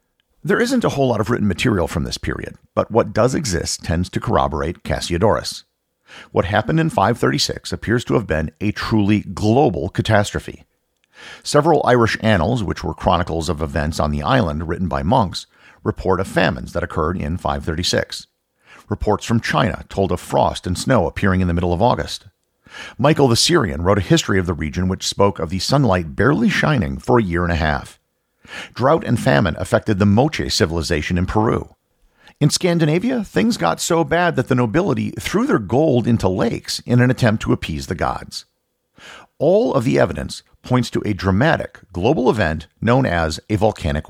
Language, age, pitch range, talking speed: English, 50-69, 80-120 Hz, 180 wpm